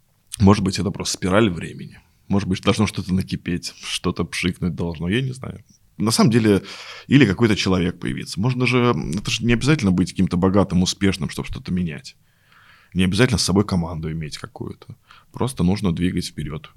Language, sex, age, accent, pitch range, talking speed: Russian, male, 20-39, native, 90-100 Hz, 170 wpm